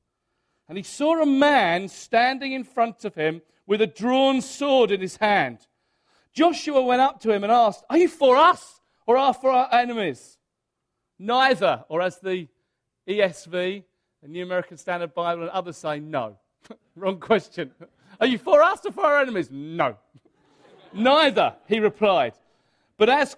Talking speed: 165 wpm